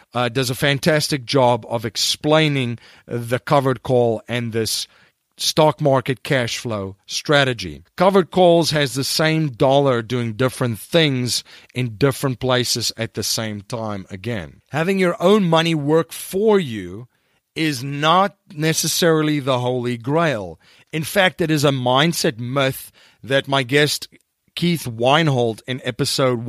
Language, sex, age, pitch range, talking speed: English, male, 40-59, 115-150 Hz, 140 wpm